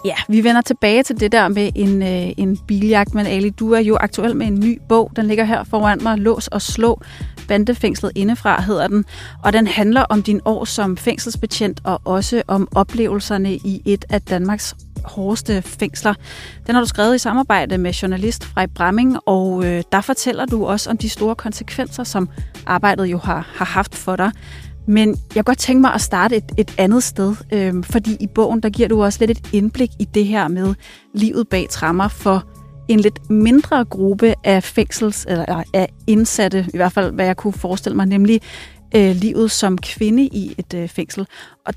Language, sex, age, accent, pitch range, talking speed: Danish, female, 30-49, native, 195-225 Hz, 200 wpm